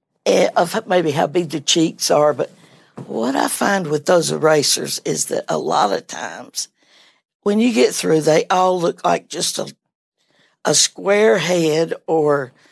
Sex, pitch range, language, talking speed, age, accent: female, 160-210 Hz, English, 160 wpm, 60-79, American